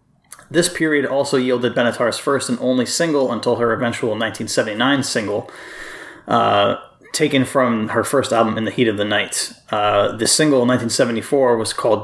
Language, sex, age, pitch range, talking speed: English, male, 30-49, 115-135 Hz, 165 wpm